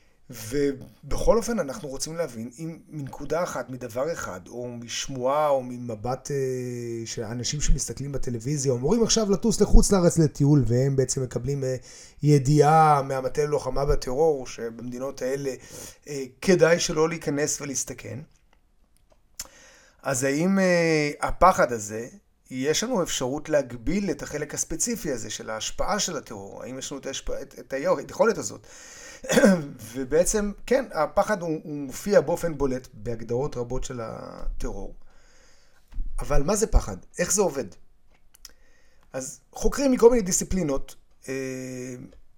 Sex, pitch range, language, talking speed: male, 130-165 Hz, Hebrew, 125 wpm